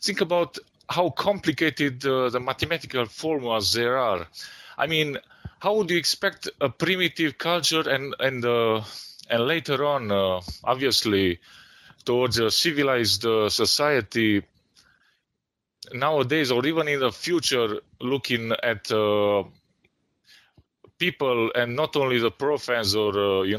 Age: 30-49